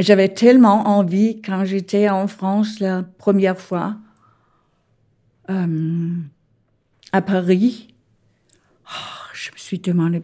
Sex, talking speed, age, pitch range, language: female, 105 wpm, 50-69, 180-205 Hz, French